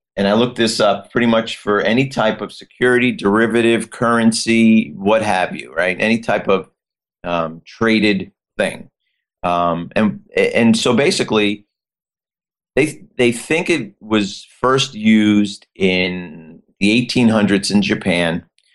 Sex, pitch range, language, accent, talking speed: male, 95-115 Hz, English, American, 135 wpm